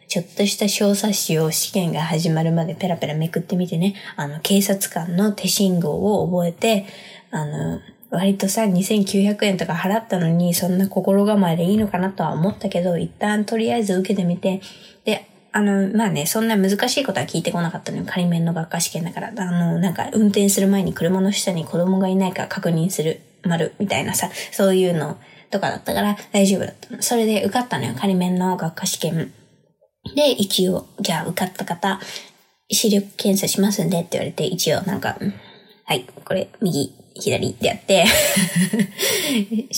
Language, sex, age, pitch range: Japanese, female, 20-39, 175-205 Hz